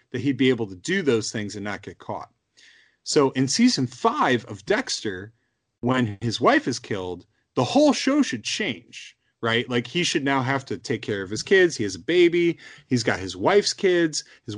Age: 30-49